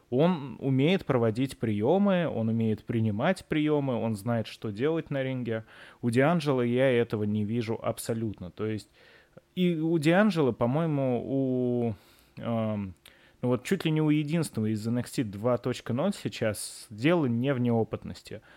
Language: Russian